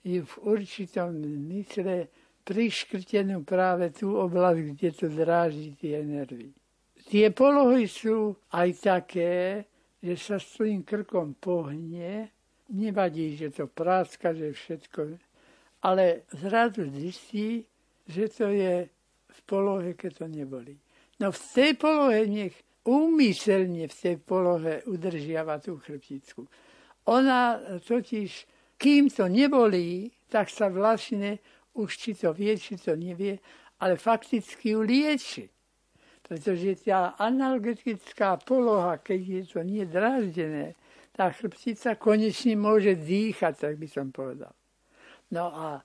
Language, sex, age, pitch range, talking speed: Slovak, male, 60-79, 175-220 Hz, 120 wpm